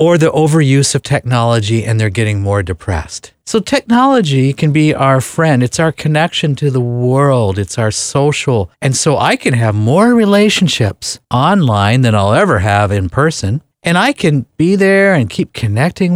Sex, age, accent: male, 50-69, American